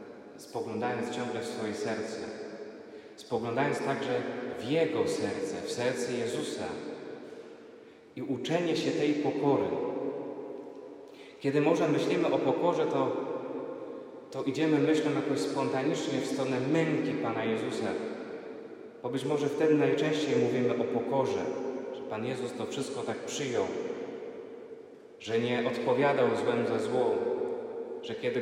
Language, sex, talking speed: Polish, male, 120 wpm